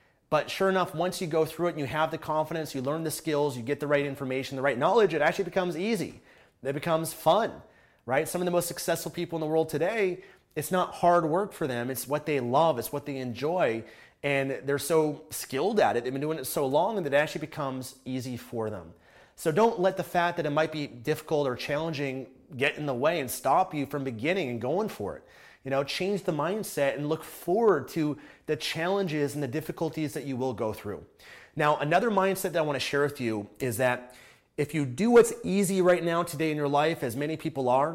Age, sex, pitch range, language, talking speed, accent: 30-49, male, 135-170 Hz, English, 230 wpm, American